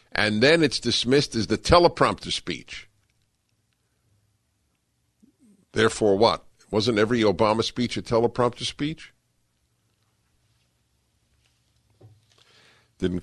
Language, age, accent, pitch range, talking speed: English, 50-69, American, 95-120 Hz, 80 wpm